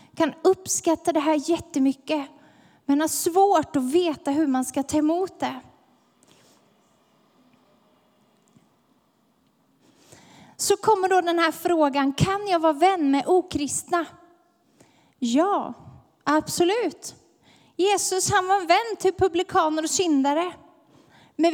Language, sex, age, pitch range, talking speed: Swedish, female, 30-49, 280-365 Hz, 110 wpm